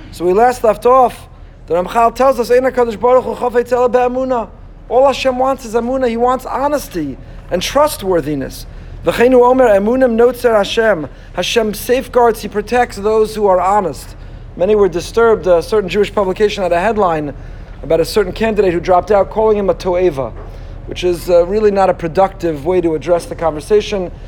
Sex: male